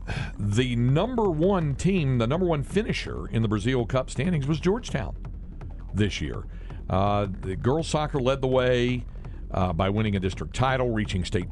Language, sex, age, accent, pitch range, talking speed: English, male, 50-69, American, 90-130 Hz, 165 wpm